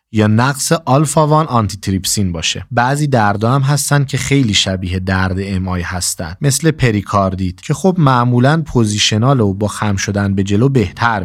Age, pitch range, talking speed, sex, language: 30-49, 100-135 Hz, 155 wpm, male, Persian